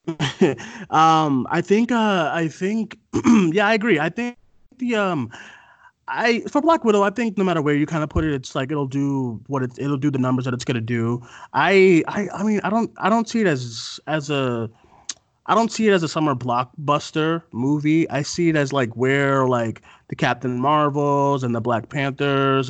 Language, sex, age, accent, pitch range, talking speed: English, male, 30-49, American, 120-150 Hz, 205 wpm